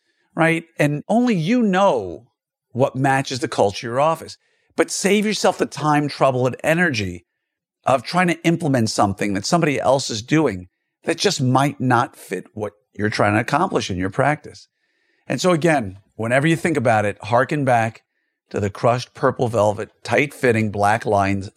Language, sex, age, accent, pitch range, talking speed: English, male, 50-69, American, 110-150 Hz, 175 wpm